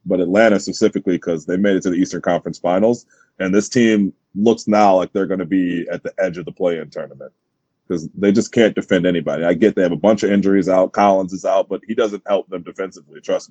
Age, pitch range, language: 30-49, 95-105 Hz, English